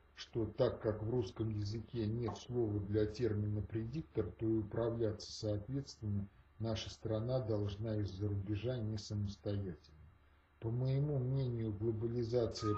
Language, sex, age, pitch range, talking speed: Russian, male, 40-59, 80-120 Hz, 120 wpm